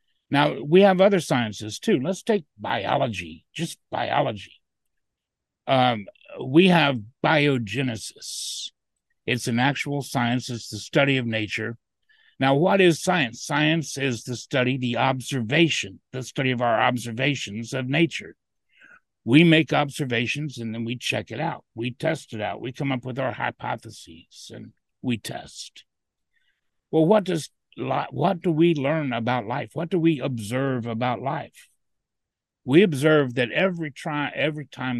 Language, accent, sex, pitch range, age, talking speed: English, American, male, 115-155 Hz, 60-79, 145 wpm